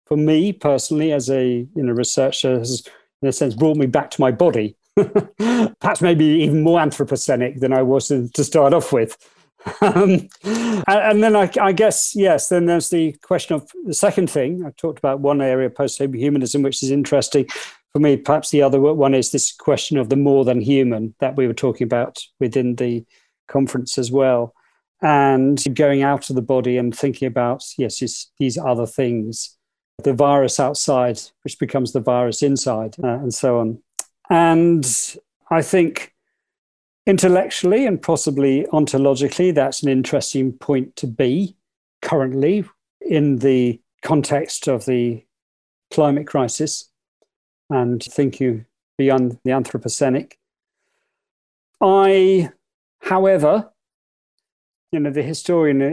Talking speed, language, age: 145 wpm, Hungarian, 40-59